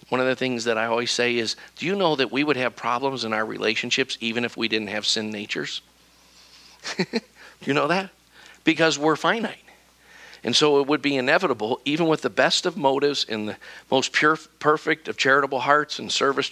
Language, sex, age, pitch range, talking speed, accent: English, male, 50-69, 115-155 Hz, 205 wpm, American